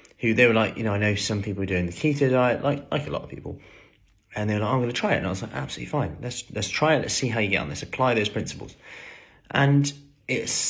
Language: English